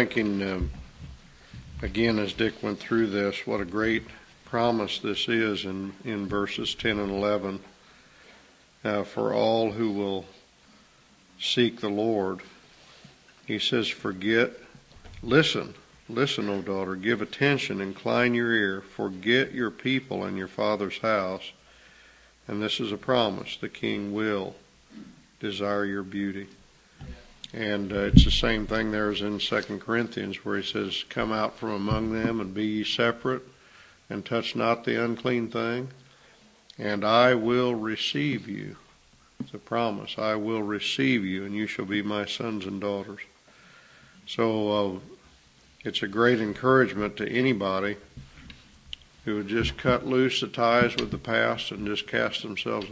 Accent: American